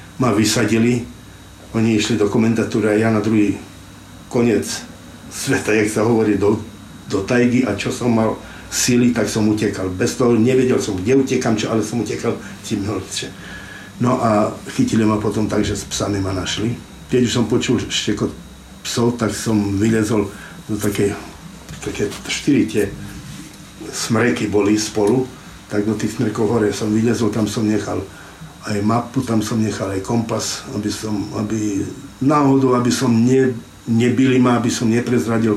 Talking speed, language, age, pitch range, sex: 155 wpm, Slovak, 60-79, 105-120 Hz, male